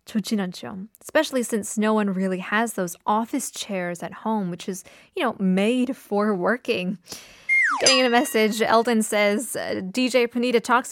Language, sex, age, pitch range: Korean, female, 20-39, 195-255 Hz